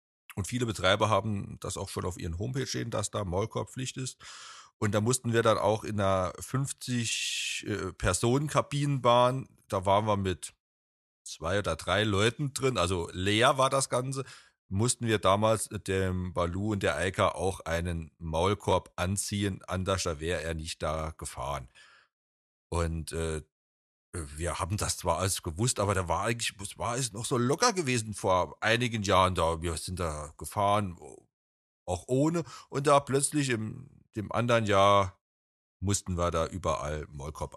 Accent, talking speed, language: German, 155 wpm, German